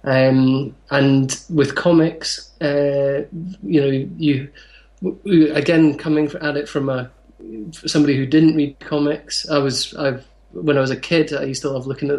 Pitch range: 135-150 Hz